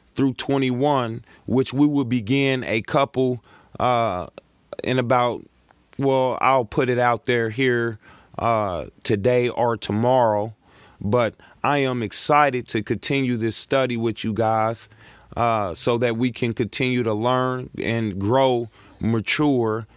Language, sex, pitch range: English, male, 115-130 Hz